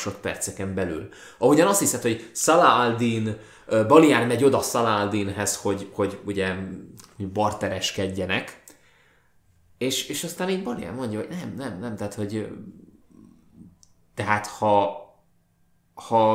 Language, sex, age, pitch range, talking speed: Hungarian, male, 20-39, 95-120 Hz, 115 wpm